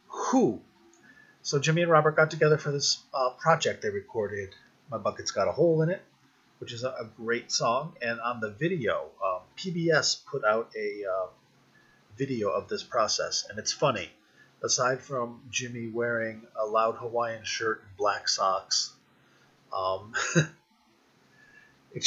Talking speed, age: 150 wpm, 30-49